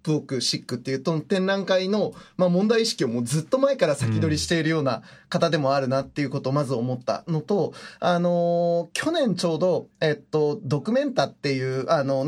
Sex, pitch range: male, 145-190 Hz